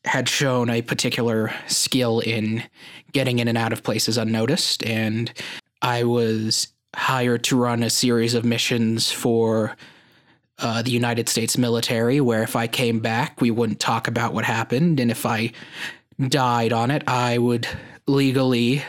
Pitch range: 115-130 Hz